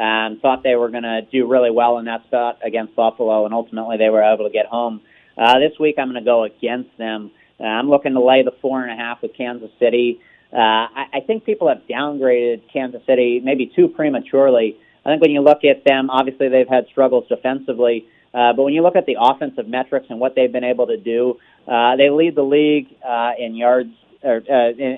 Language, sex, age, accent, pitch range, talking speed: English, male, 40-59, American, 120-135 Hz, 230 wpm